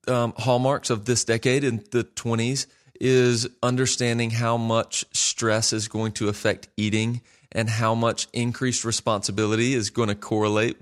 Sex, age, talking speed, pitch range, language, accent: male, 30-49, 150 wpm, 110-125 Hz, English, American